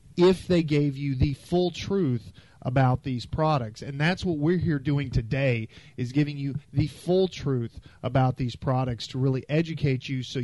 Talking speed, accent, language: 180 wpm, American, English